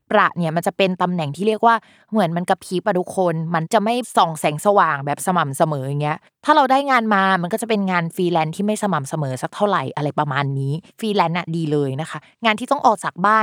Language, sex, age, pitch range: Thai, female, 20-39, 170-225 Hz